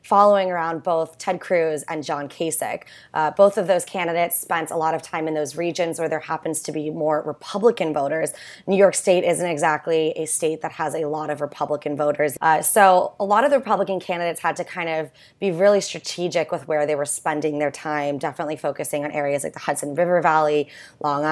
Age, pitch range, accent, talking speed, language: 20-39, 155-180 Hz, American, 210 wpm, English